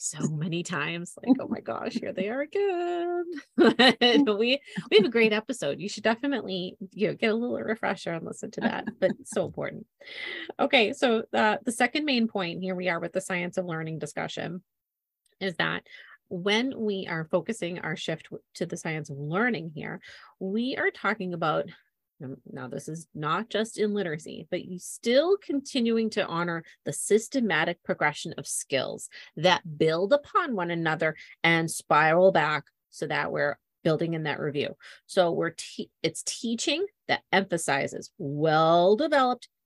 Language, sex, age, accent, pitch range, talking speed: English, female, 30-49, American, 165-230 Hz, 165 wpm